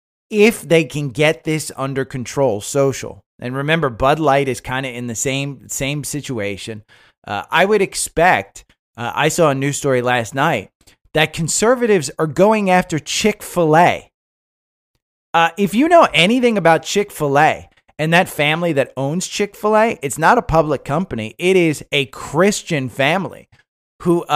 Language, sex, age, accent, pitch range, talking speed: English, male, 30-49, American, 115-160 Hz, 155 wpm